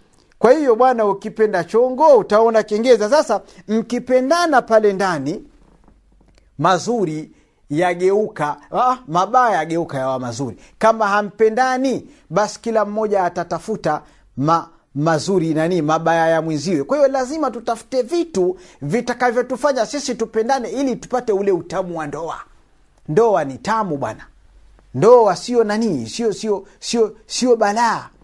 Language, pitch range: Swahili, 150-230 Hz